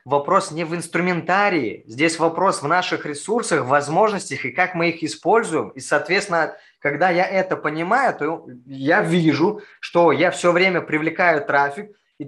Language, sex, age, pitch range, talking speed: Russian, male, 20-39, 150-185 Hz, 150 wpm